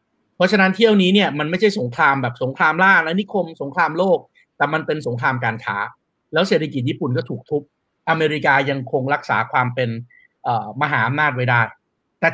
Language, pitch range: Thai, 130-185 Hz